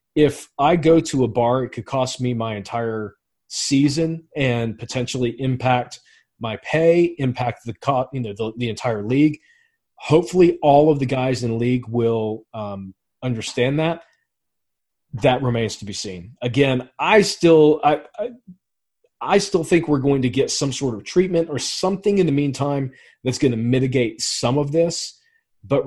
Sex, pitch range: male, 120-155 Hz